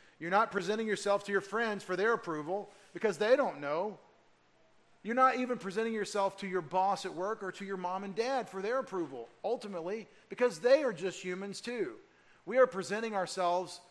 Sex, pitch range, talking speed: male, 155-195 Hz, 190 wpm